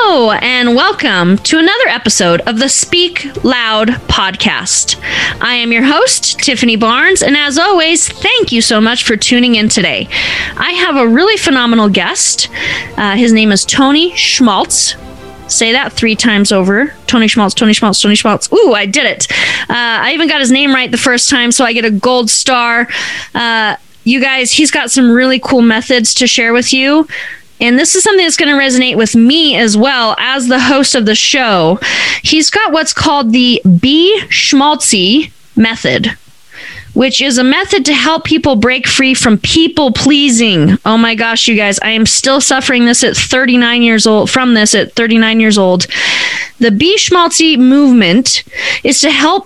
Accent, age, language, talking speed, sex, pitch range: American, 20-39, English, 180 wpm, female, 225-290 Hz